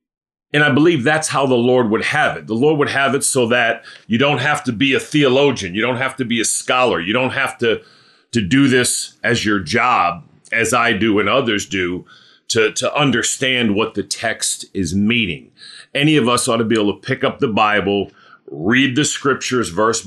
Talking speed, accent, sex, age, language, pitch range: 210 wpm, American, male, 40-59, English, 110-140 Hz